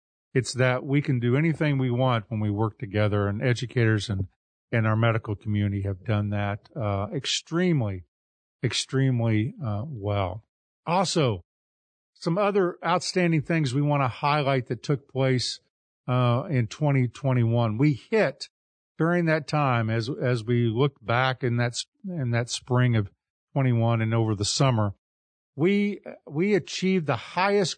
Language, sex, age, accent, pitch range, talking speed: English, male, 50-69, American, 120-195 Hz, 150 wpm